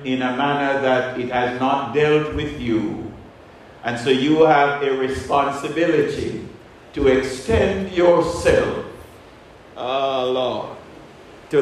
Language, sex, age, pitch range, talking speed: English, male, 50-69, 130-180 Hz, 115 wpm